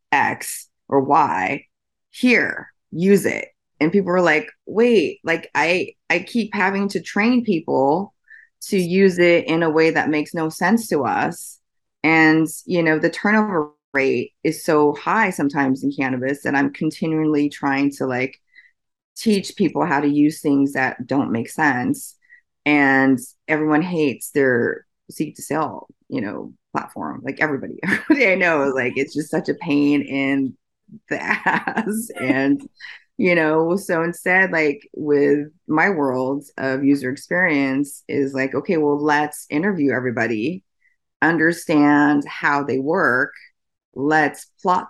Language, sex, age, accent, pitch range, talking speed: English, female, 30-49, American, 140-175 Hz, 145 wpm